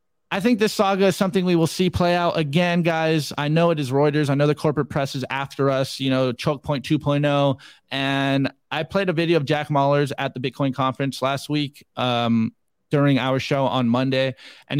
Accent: American